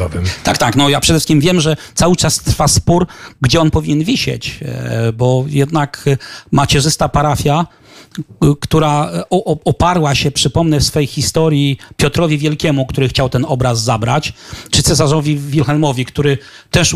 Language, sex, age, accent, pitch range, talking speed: Polish, male, 40-59, native, 135-160 Hz, 135 wpm